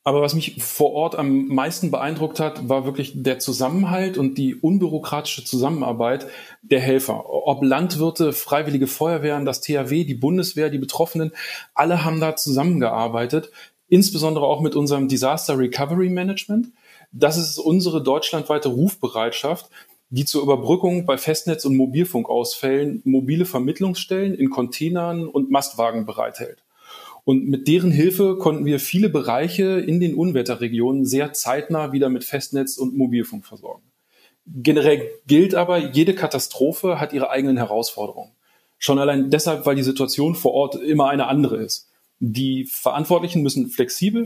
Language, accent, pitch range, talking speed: German, German, 130-170 Hz, 140 wpm